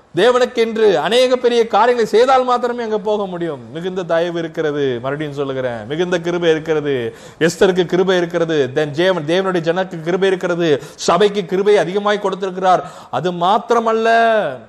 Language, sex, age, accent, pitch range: Tamil, male, 30-49, native, 155-205 Hz